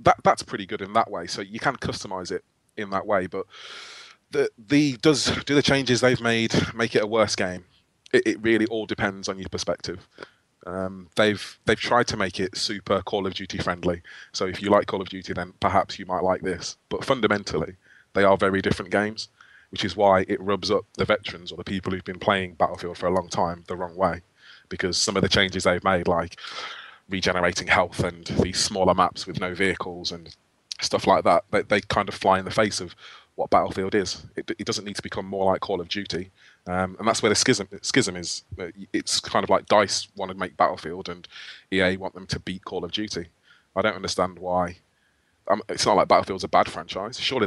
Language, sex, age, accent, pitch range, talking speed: English, male, 20-39, British, 90-105 Hz, 220 wpm